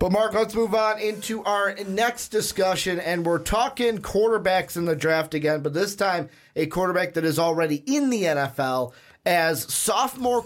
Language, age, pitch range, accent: English, 30-49, 140-185 Hz, American